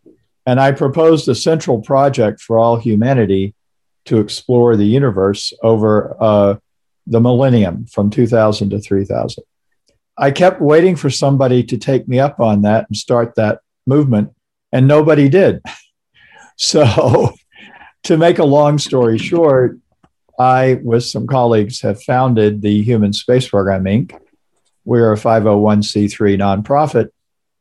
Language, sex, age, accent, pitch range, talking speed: English, male, 50-69, American, 110-140 Hz, 135 wpm